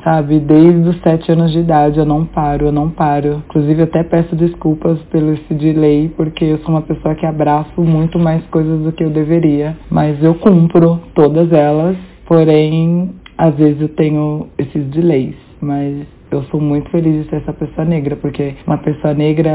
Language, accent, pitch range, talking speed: Portuguese, Brazilian, 150-165 Hz, 185 wpm